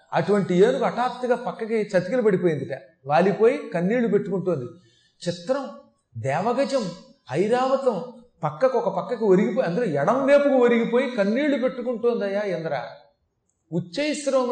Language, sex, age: Telugu, male, 30-49